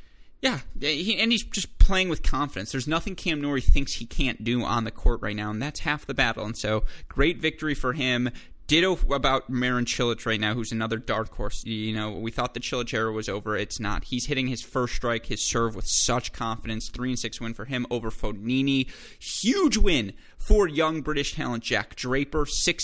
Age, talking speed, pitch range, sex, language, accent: 20-39, 210 wpm, 115-140 Hz, male, English, American